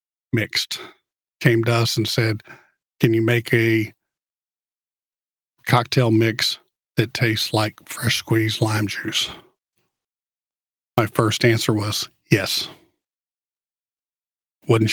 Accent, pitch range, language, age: American, 110-130 Hz, English, 50-69